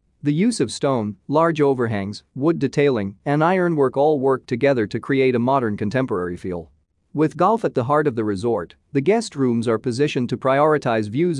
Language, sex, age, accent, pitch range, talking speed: English, male, 40-59, American, 115-150 Hz, 185 wpm